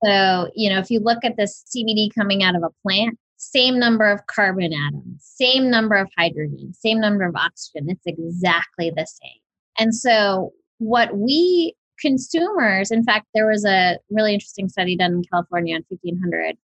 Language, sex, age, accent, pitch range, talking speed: English, female, 20-39, American, 180-225 Hz, 175 wpm